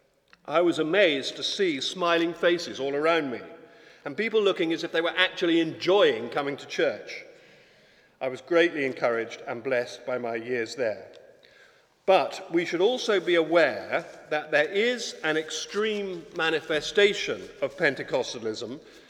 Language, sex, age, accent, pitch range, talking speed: English, male, 50-69, British, 150-230 Hz, 145 wpm